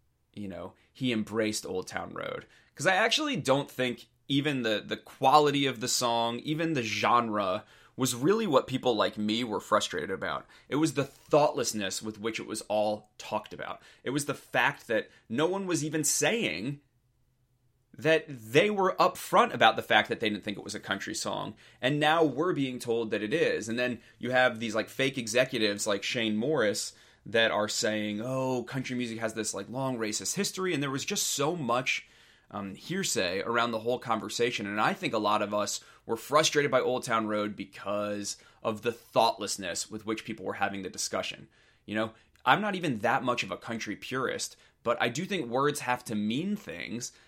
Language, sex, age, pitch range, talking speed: English, male, 30-49, 110-140 Hz, 195 wpm